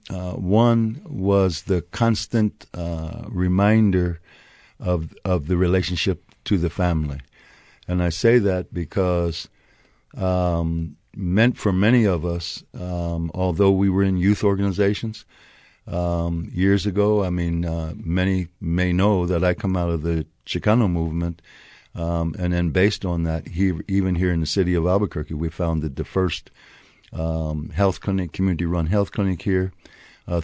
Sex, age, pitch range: male, 60-79, 85-100 Hz